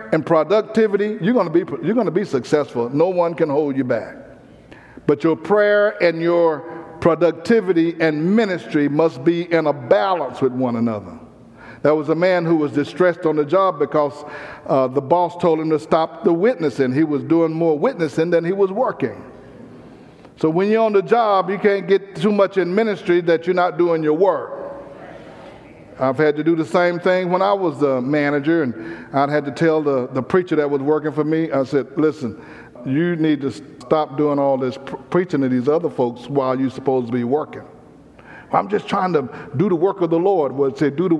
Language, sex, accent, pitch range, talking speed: English, male, American, 145-180 Hz, 205 wpm